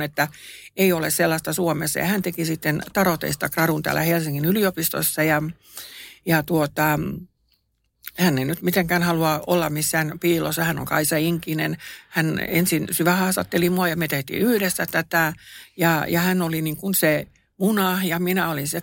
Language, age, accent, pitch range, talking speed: Finnish, 60-79, native, 155-180 Hz, 165 wpm